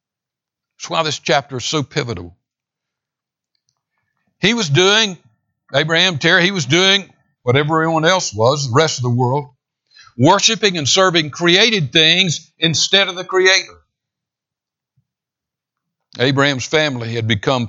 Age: 60-79